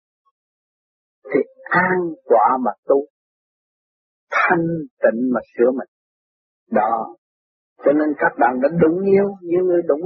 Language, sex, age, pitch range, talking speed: Vietnamese, male, 50-69, 145-240 Hz, 130 wpm